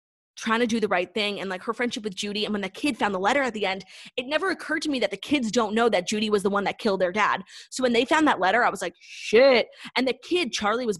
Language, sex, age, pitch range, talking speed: English, female, 20-39, 205-275 Hz, 305 wpm